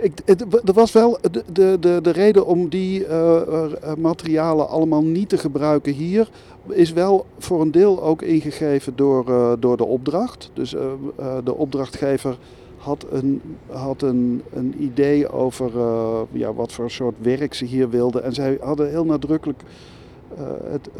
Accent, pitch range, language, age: Dutch, 120-150 Hz, Dutch, 50-69